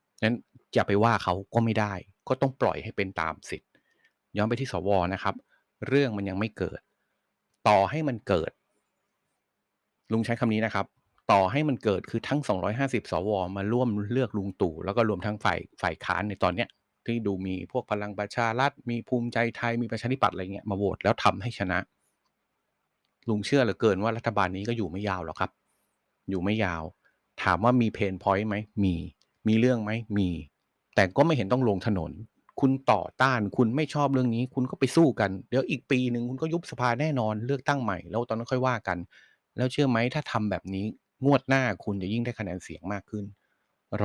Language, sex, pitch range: Thai, male, 95-125 Hz